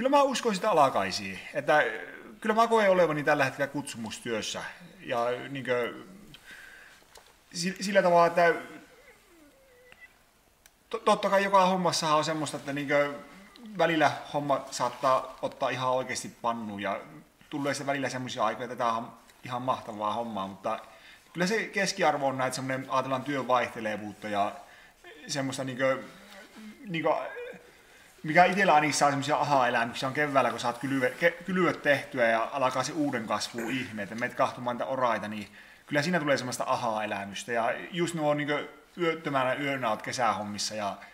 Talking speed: 140 wpm